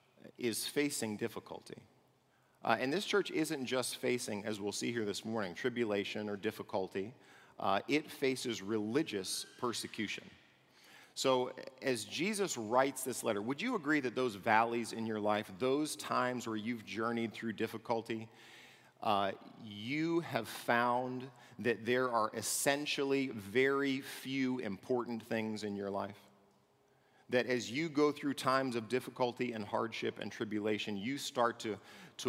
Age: 40-59